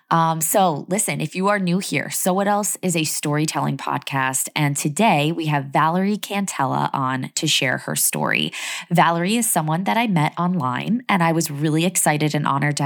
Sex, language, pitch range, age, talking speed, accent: female, English, 145-175 Hz, 20-39, 190 wpm, American